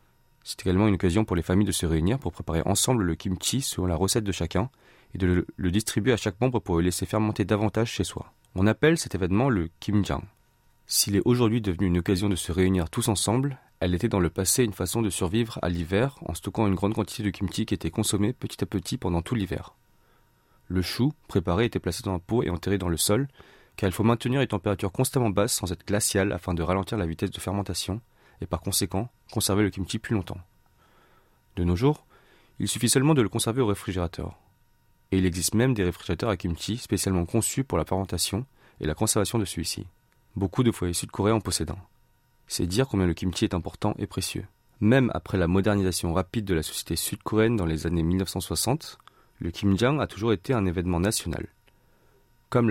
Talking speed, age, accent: 210 wpm, 30-49, French